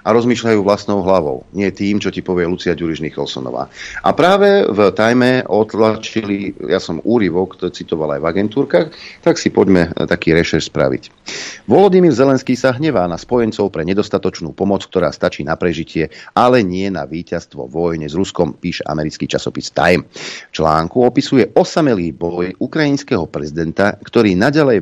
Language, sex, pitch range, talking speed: Slovak, male, 85-110 Hz, 155 wpm